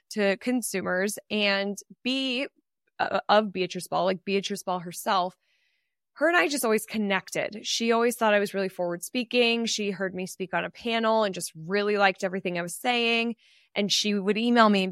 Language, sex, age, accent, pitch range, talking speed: English, female, 20-39, American, 190-225 Hz, 190 wpm